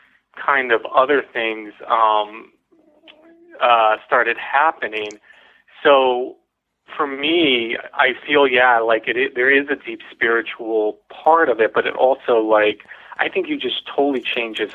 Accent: American